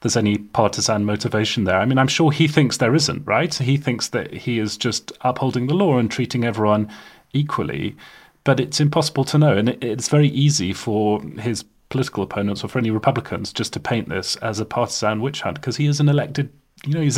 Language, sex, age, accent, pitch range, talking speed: English, male, 30-49, British, 110-145 Hz, 215 wpm